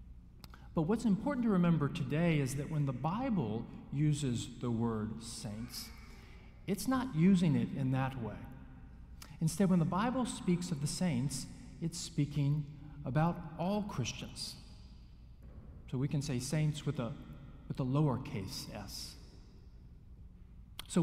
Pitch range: 115-170 Hz